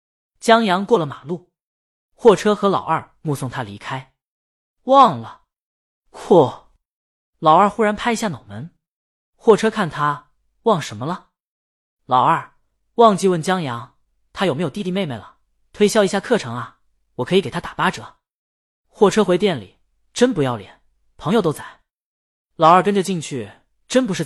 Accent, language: native, Chinese